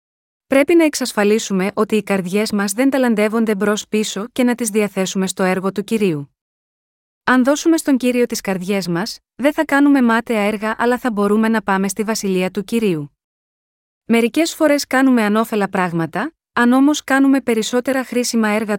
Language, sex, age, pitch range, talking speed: Greek, female, 30-49, 200-255 Hz, 165 wpm